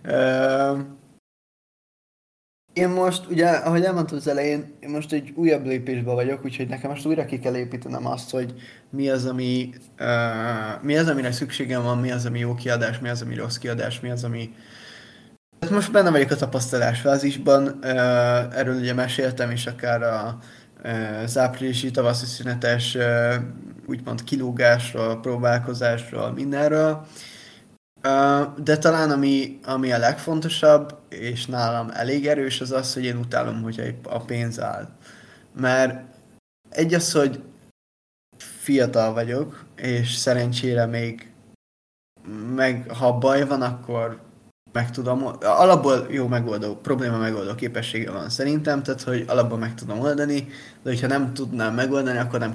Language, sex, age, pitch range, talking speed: Hungarian, male, 20-39, 120-140 Hz, 140 wpm